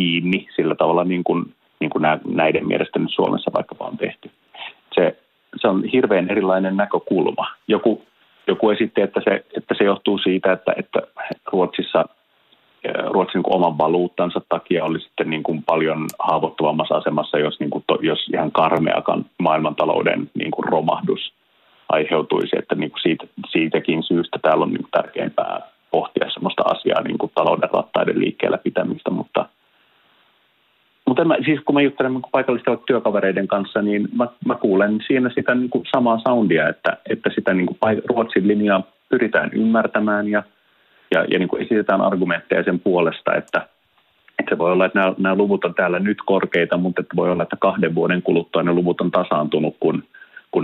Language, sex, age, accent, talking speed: Finnish, male, 30-49, native, 165 wpm